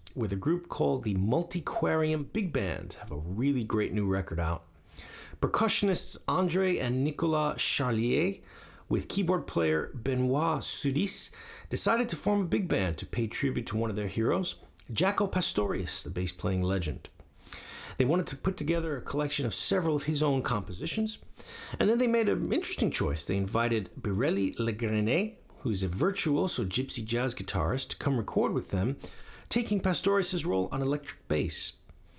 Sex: male